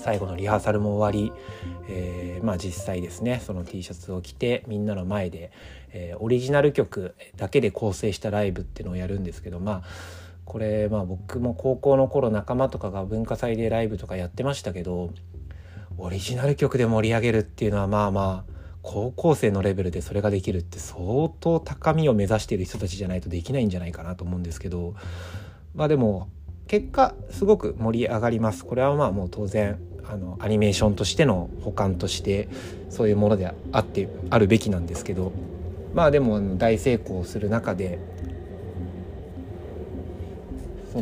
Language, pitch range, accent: Japanese, 90-115 Hz, native